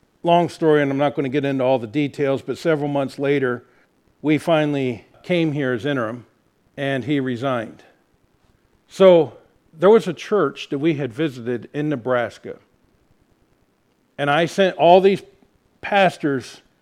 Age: 50-69